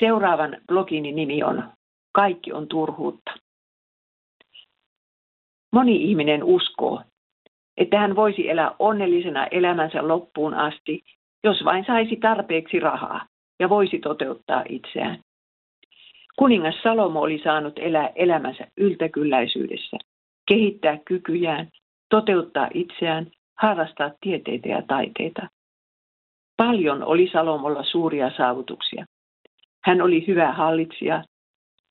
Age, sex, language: 50-69, female, Finnish